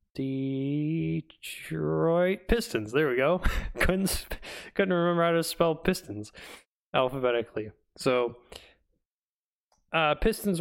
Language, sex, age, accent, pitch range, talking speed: English, male, 20-39, American, 115-145 Hz, 90 wpm